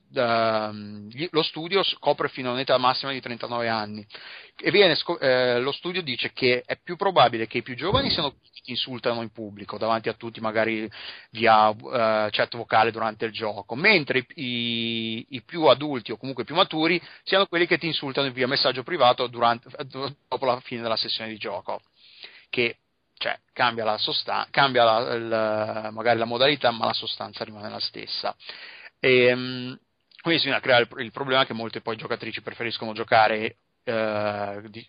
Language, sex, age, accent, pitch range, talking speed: Italian, male, 30-49, native, 110-135 Hz, 175 wpm